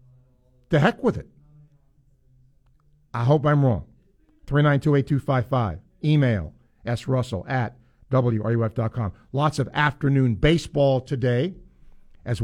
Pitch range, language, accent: 120-145 Hz, English, American